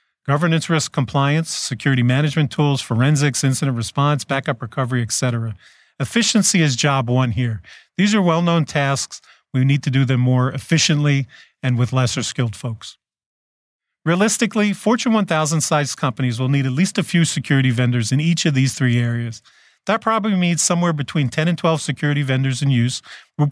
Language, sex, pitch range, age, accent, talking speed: English, male, 125-160 Hz, 40-59, American, 165 wpm